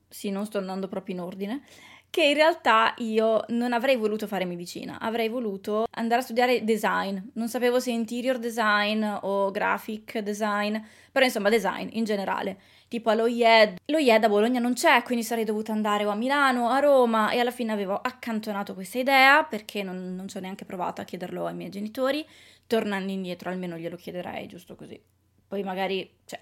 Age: 20-39